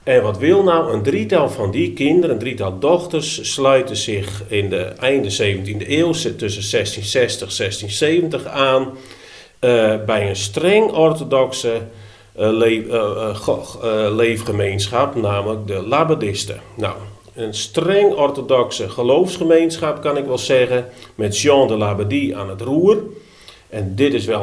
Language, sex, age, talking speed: Dutch, male, 40-59, 140 wpm